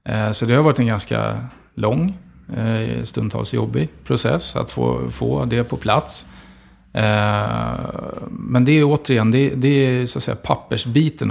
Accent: Norwegian